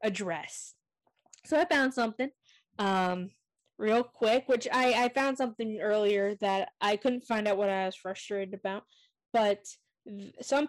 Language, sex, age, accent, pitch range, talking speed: English, female, 10-29, American, 200-235 Hz, 150 wpm